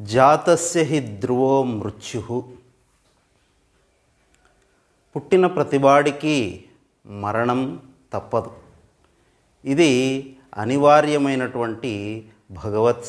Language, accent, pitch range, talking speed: Telugu, native, 105-130 Hz, 50 wpm